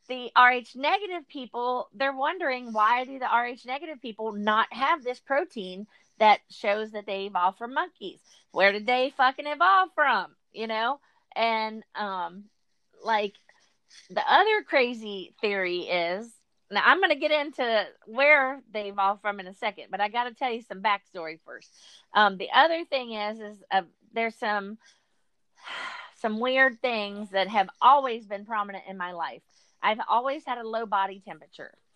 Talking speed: 165 wpm